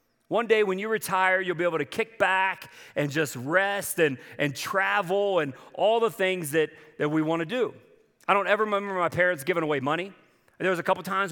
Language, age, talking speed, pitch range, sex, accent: English, 40-59, 215 wpm, 140-170 Hz, male, American